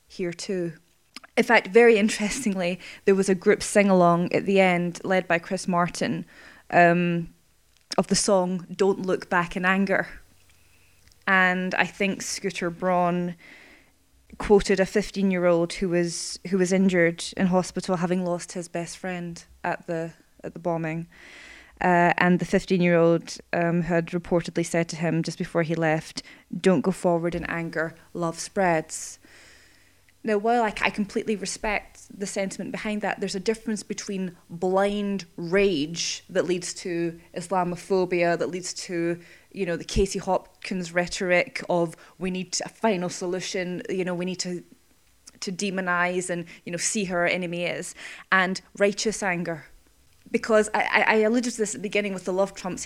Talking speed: 155 wpm